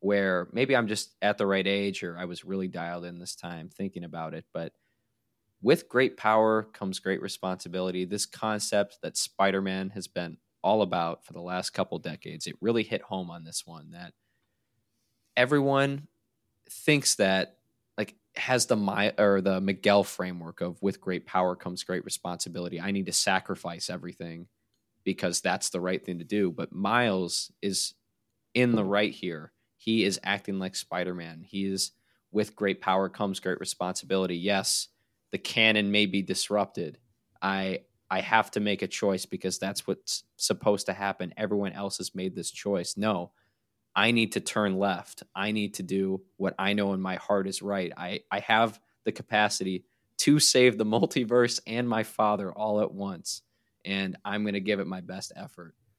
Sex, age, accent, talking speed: male, 20-39, American, 175 wpm